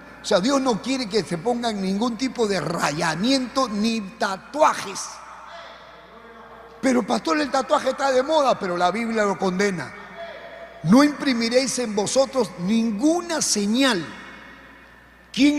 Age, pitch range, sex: 50-69, 195-270 Hz, male